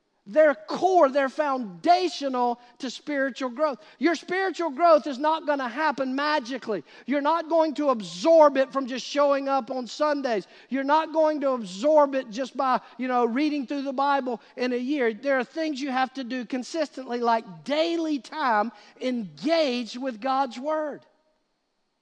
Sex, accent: male, American